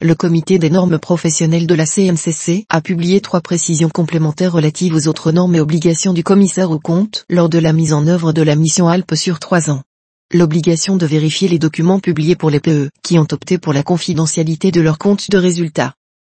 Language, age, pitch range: French, 30-49, 160-180 Hz